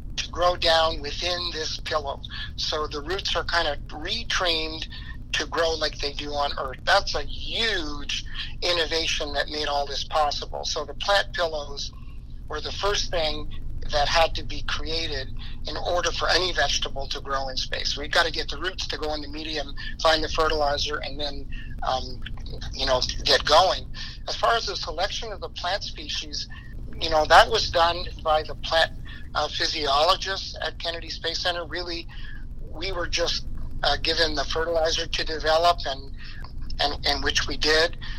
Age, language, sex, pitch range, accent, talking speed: 50-69, English, male, 140-165 Hz, American, 175 wpm